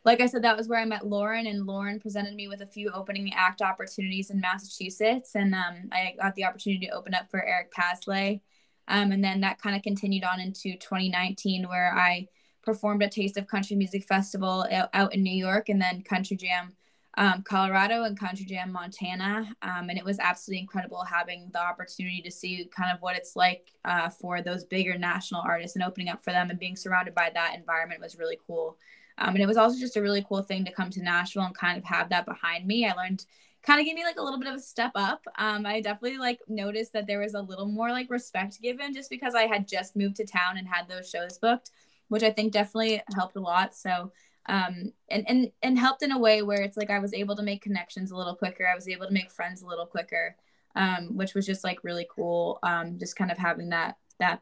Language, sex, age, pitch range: English, female, 10-29, 180-215 Hz